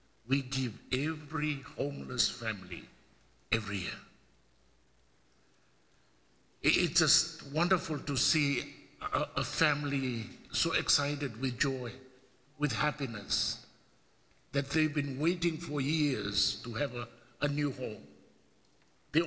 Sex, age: male, 60-79